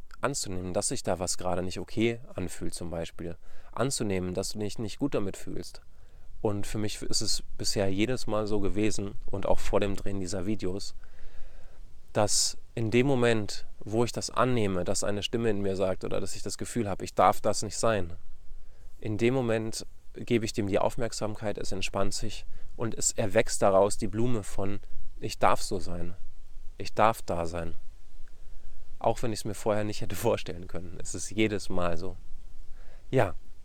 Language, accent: German, German